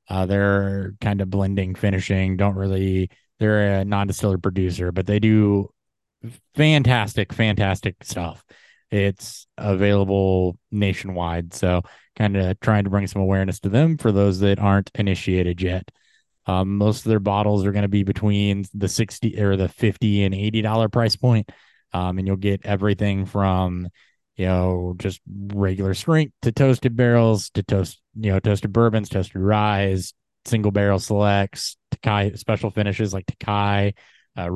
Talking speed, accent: 155 wpm, American